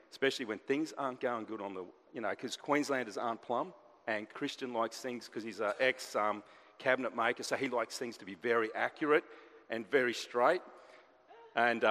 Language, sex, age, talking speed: English, male, 40-59, 180 wpm